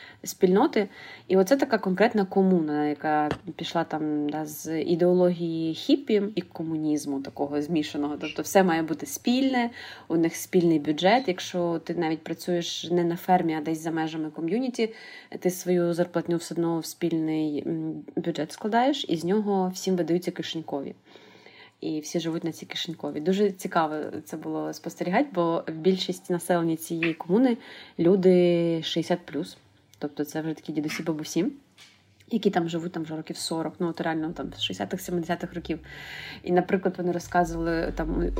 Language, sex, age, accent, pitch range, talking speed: Ukrainian, female, 20-39, native, 165-195 Hz, 150 wpm